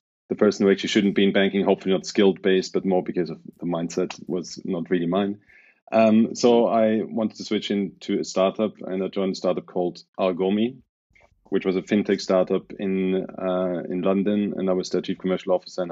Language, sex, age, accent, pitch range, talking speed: English, male, 30-49, German, 95-105 Hz, 205 wpm